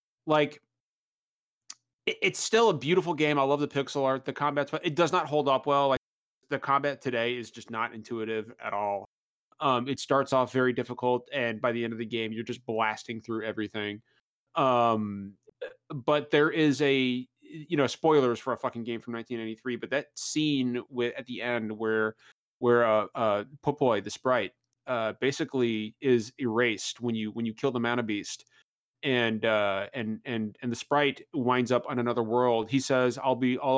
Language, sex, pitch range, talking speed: English, male, 115-140 Hz, 185 wpm